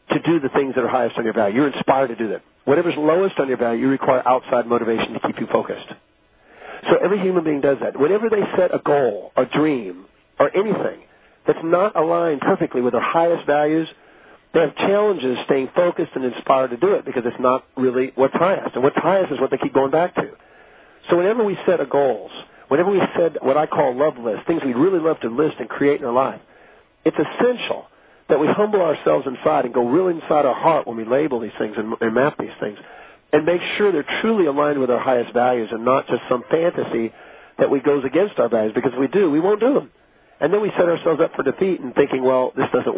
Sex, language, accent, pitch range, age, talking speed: male, English, American, 130-185 Hz, 50-69, 230 wpm